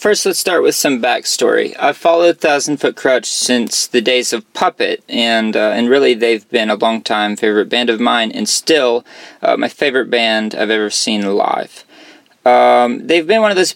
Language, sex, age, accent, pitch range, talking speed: English, male, 20-39, American, 115-140 Hz, 195 wpm